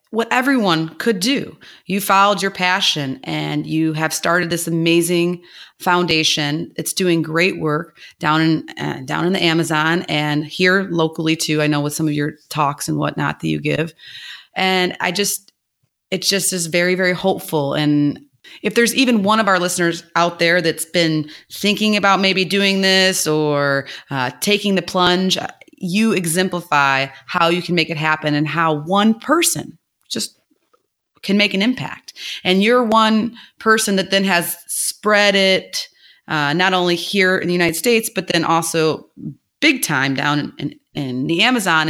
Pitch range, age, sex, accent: 155-195 Hz, 30-49, female, American